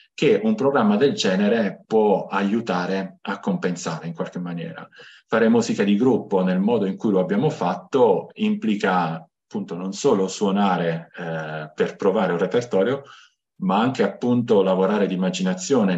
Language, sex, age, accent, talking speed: Italian, male, 40-59, native, 145 wpm